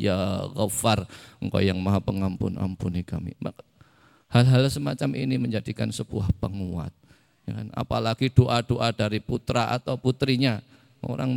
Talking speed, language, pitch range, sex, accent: 110 wpm, Indonesian, 105-135 Hz, male, native